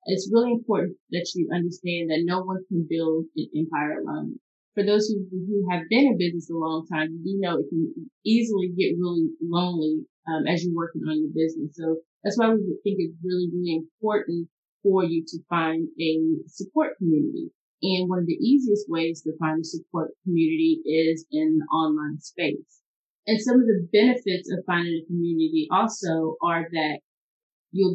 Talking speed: 185 wpm